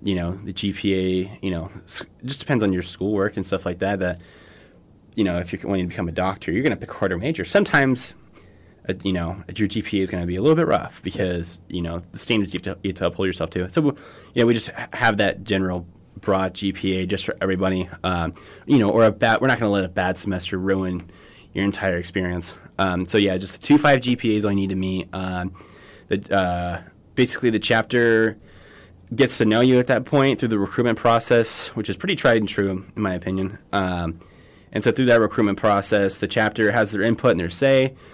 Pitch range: 90-110 Hz